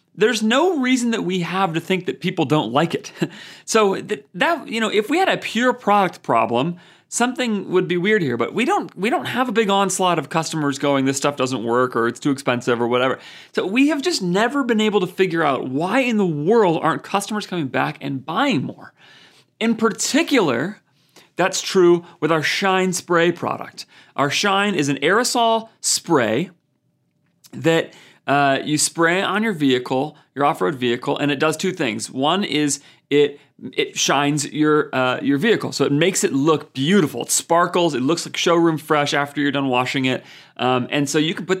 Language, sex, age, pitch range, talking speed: English, male, 30-49, 140-190 Hz, 195 wpm